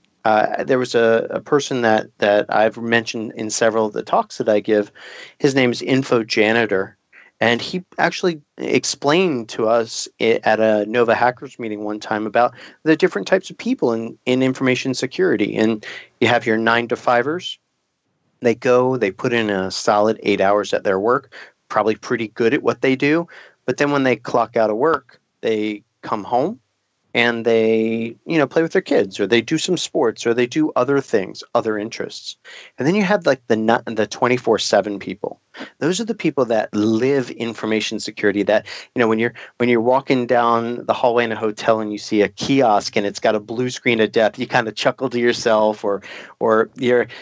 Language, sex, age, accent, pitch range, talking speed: English, male, 40-59, American, 110-130 Hz, 195 wpm